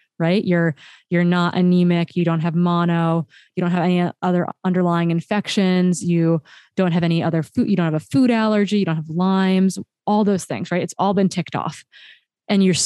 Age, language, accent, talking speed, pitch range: 20-39, English, American, 200 wpm, 170-200 Hz